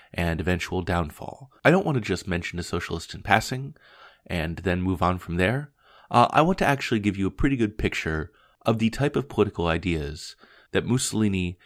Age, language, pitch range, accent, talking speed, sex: 30-49, English, 90-110 Hz, American, 195 wpm, male